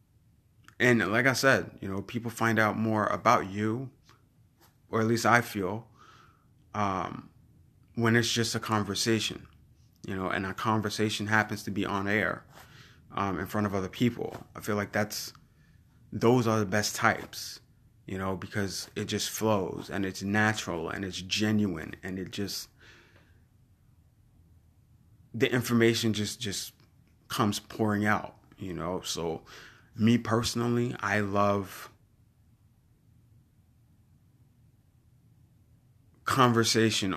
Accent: American